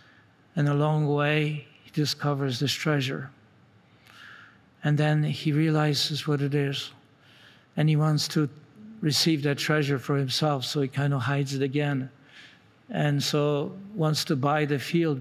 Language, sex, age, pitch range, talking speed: English, male, 60-79, 135-145 Hz, 150 wpm